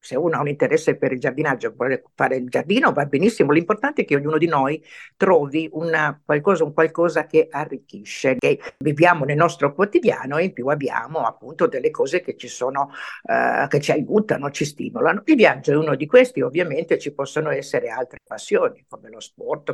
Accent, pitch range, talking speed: native, 145-235 Hz, 195 wpm